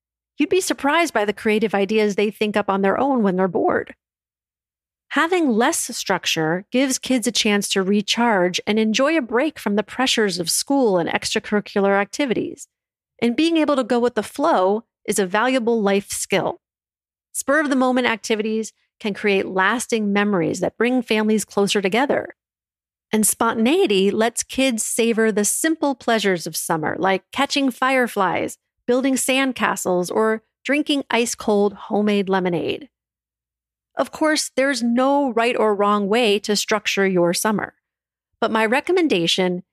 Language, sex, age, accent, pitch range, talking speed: English, female, 40-59, American, 200-255 Hz, 145 wpm